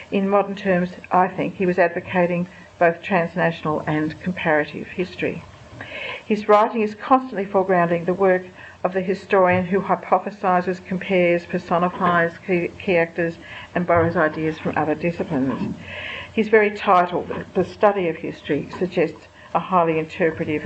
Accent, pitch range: Australian, 170-200 Hz